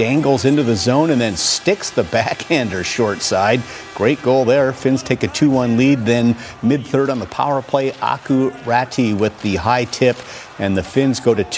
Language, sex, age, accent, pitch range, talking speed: English, male, 50-69, American, 120-145 Hz, 185 wpm